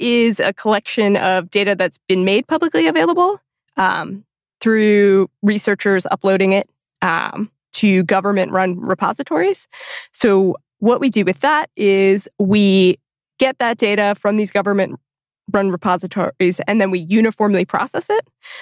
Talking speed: 130 wpm